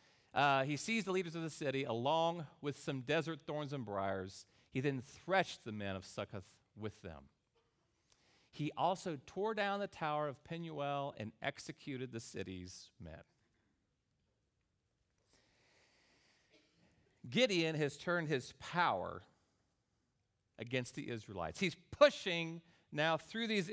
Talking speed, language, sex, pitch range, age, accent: 125 wpm, English, male, 110-175 Hz, 40-59, American